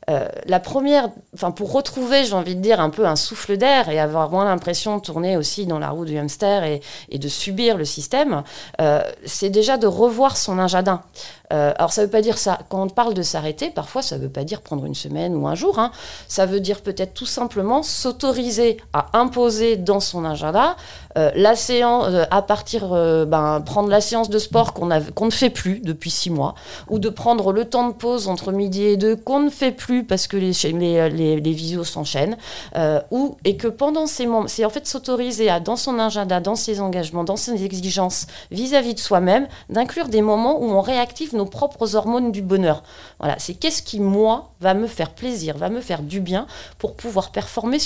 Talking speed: 215 wpm